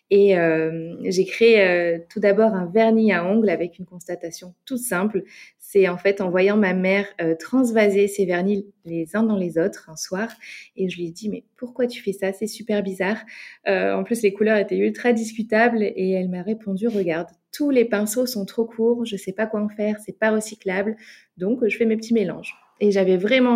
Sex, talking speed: female, 215 wpm